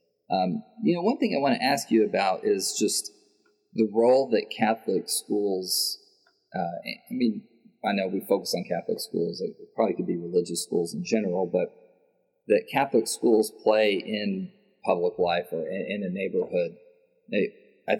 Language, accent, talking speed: English, American, 165 wpm